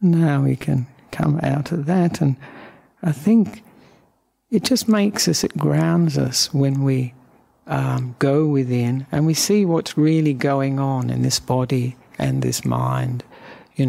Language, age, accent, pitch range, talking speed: English, 60-79, British, 125-165 Hz, 155 wpm